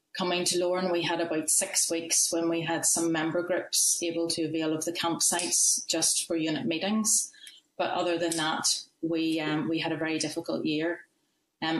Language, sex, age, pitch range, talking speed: English, female, 30-49, 165-190 Hz, 190 wpm